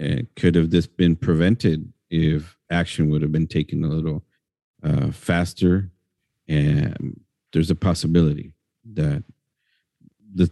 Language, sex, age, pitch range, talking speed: English, male, 50-69, 80-105 Hz, 125 wpm